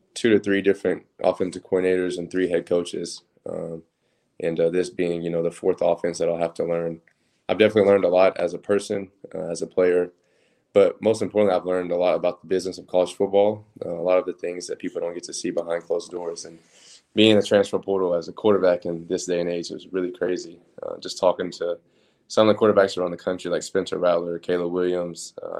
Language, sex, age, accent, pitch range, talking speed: English, male, 20-39, American, 85-100 Hz, 230 wpm